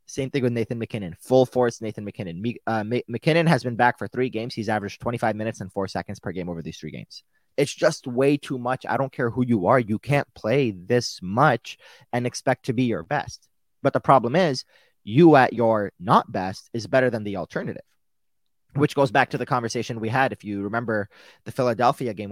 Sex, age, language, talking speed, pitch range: male, 30-49, English, 215 wpm, 105-130 Hz